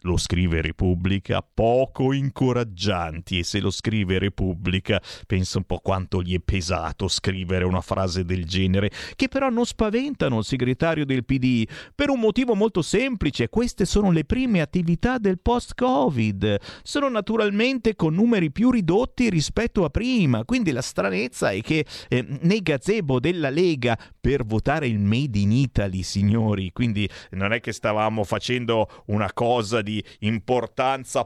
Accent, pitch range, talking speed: native, 105-150 Hz, 150 wpm